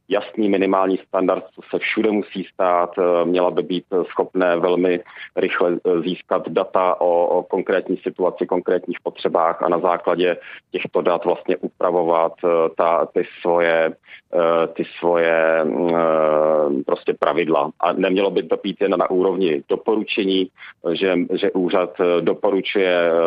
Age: 40-59